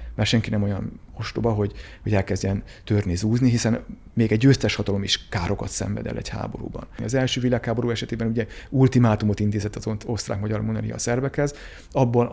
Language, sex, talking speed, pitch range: Hungarian, male, 165 wpm, 105-120 Hz